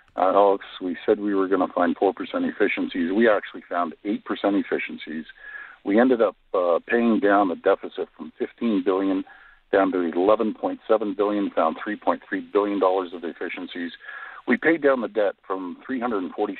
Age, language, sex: 50-69, English, male